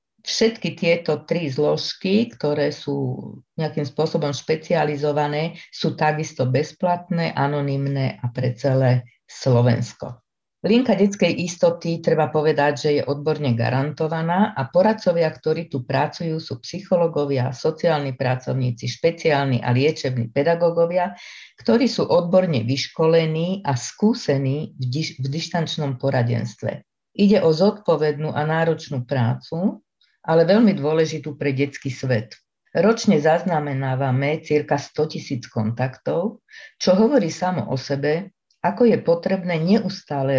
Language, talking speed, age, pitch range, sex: Slovak, 115 wpm, 40-59, 135-175 Hz, female